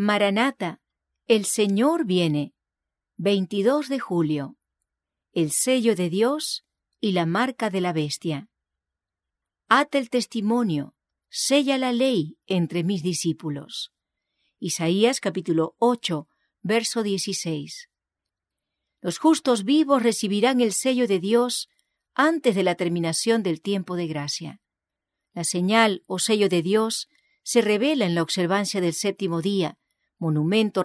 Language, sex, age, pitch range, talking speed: English, female, 40-59, 165-240 Hz, 120 wpm